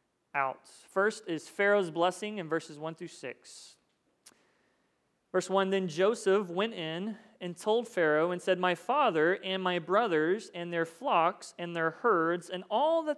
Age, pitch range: 30-49, 165-220 Hz